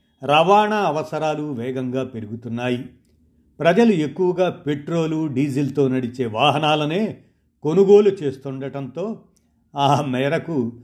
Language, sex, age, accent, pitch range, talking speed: Telugu, male, 50-69, native, 130-170 Hz, 80 wpm